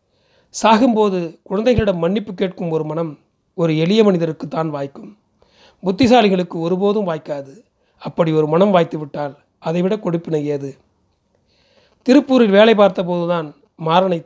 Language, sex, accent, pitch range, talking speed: Tamil, male, native, 160-200 Hz, 115 wpm